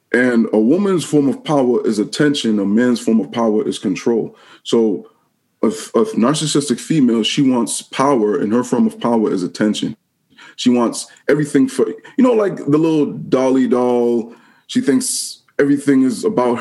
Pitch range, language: 115-190 Hz, English